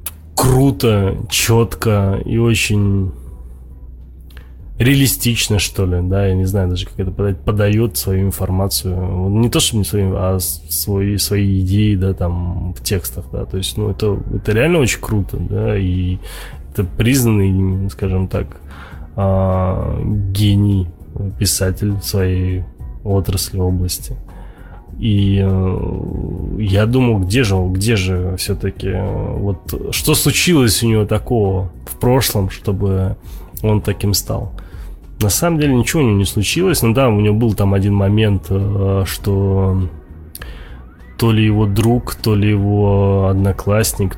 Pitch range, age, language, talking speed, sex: 90-105 Hz, 20-39, Russian, 135 wpm, male